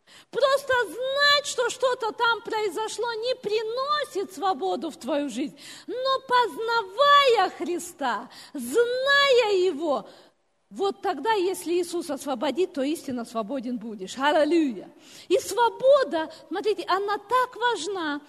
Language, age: Russian, 40-59